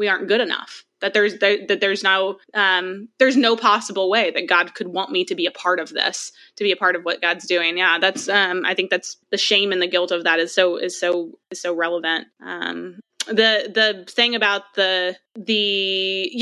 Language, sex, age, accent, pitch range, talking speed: English, female, 20-39, American, 195-240 Hz, 225 wpm